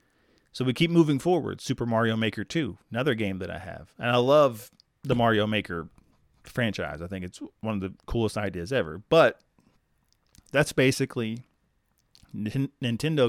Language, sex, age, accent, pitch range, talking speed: English, male, 30-49, American, 100-125 Hz, 155 wpm